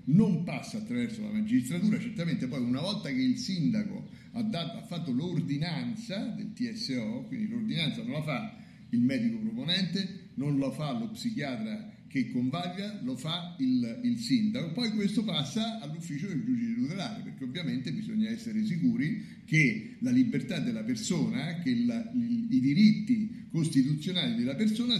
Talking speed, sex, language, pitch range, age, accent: 155 wpm, male, Italian, 175-235 Hz, 60-79, native